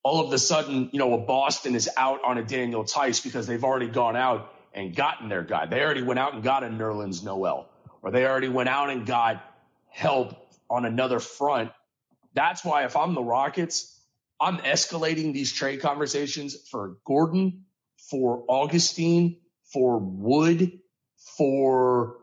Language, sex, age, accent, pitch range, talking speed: English, male, 30-49, American, 125-175 Hz, 165 wpm